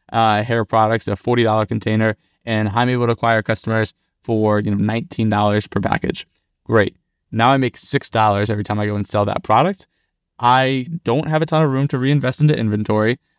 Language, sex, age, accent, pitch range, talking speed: English, male, 20-39, American, 110-130 Hz, 190 wpm